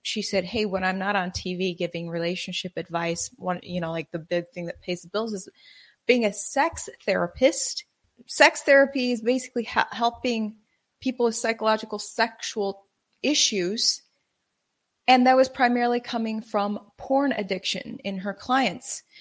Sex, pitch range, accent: female, 200-250 Hz, American